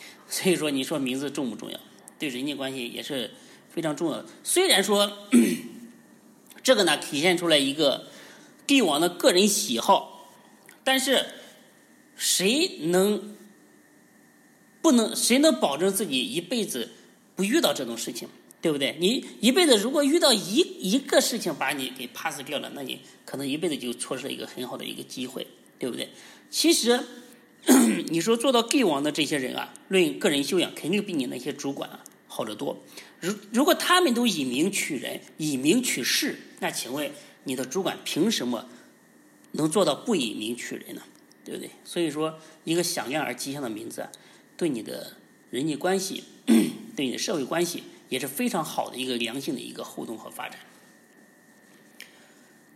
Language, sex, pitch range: Chinese, male, 165-265 Hz